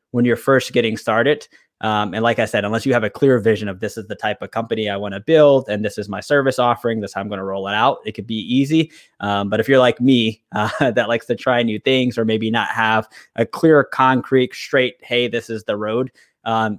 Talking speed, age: 255 wpm, 20-39